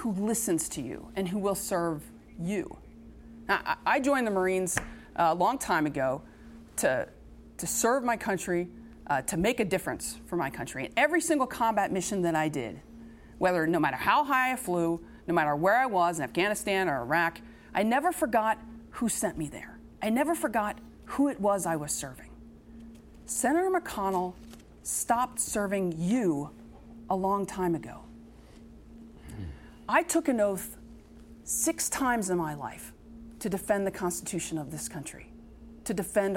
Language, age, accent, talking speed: English, 40-59, American, 160 wpm